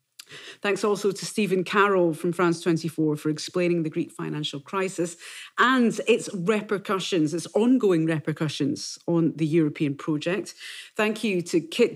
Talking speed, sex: 140 wpm, female